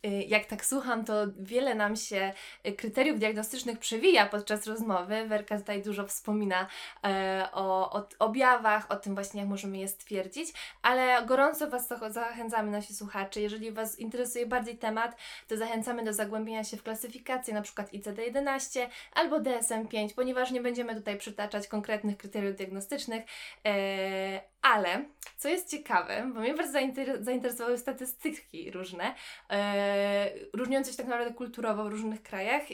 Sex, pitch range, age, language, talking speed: female, 205-250 Hz, 20-39, Polish, 140 wpm